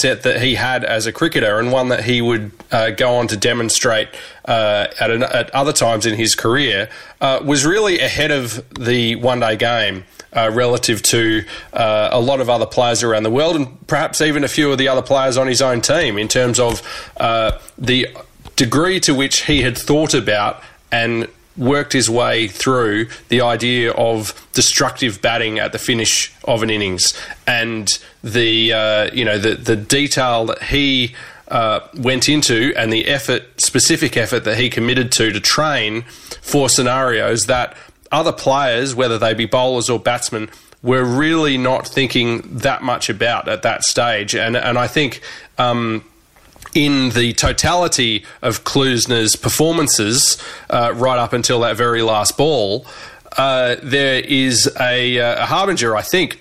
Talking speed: 165 wpm